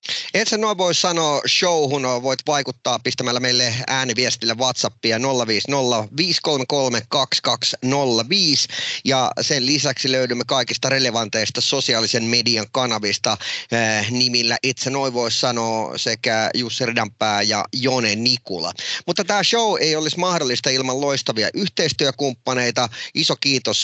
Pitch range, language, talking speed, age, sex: 115-140 Hz, Finnish, 110 wpm, 30-49, male